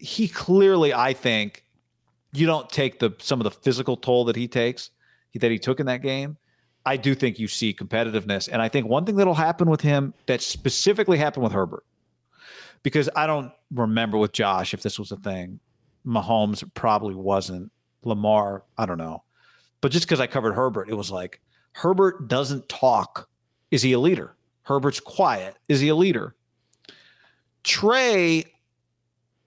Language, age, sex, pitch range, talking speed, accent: English, 40-59, male, 115-160 Hz, 175 wpm, American